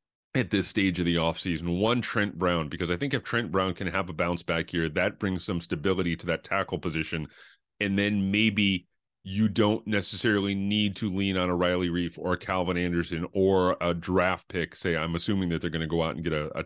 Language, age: English, 30-49